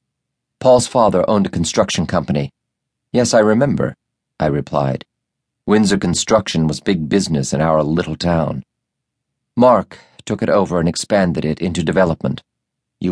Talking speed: 135 wpm